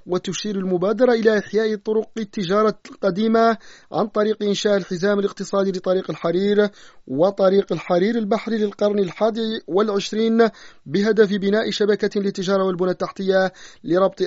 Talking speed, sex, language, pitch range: 115 wpm, male, Arabic, 190-215 Hz